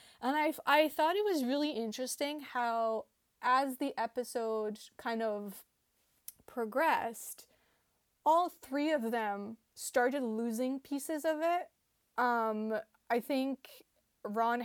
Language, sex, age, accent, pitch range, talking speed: English, female, 20-39, American, 220-280 Hz, 115 wpm